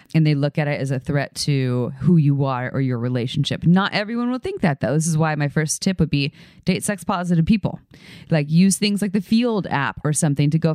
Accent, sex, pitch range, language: American, female, 140-170 Hz, English